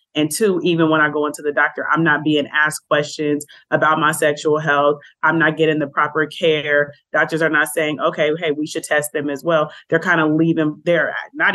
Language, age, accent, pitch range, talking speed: English, 30-49, American, 150-175 Hz, 220 wpm